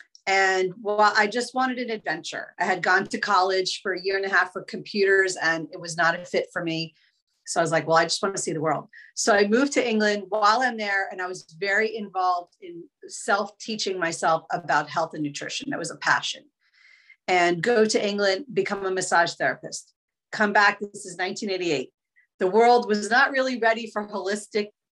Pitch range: 180-220 Hz